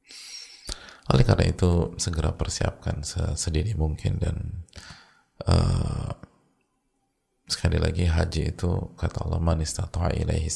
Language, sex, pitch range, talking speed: English, male, 80-95 Hz, 95 wpm